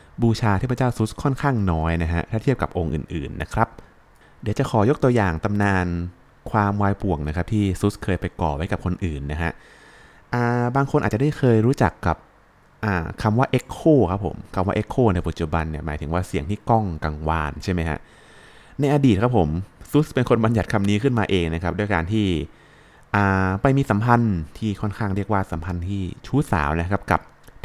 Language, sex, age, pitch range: Thai, male, 20-39, 85-115 Hz